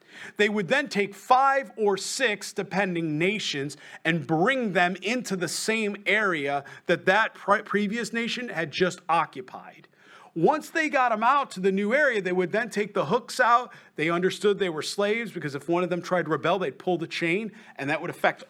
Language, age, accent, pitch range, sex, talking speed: English, 40-59, American, 155-205 Hz, male, 195 wpm